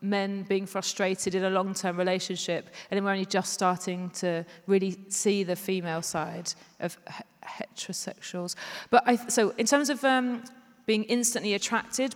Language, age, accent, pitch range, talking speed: English, 40-59, British, 190-225 Hz, 150 wpm